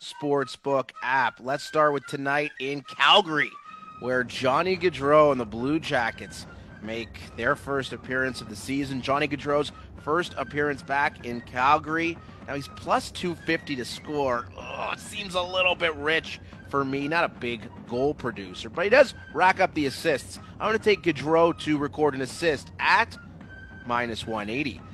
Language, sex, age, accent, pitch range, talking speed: English, male, 30-49, American, 115-150 Hz, 165 wpm